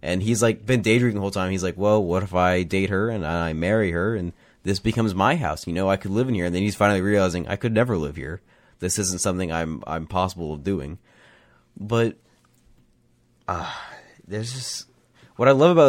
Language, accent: English, American